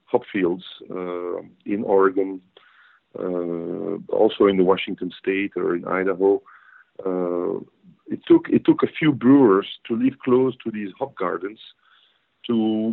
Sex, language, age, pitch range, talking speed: male, English, 50-69, 100-125 Hz, 140 wpm